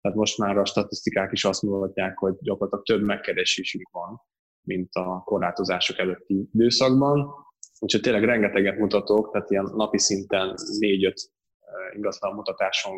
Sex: male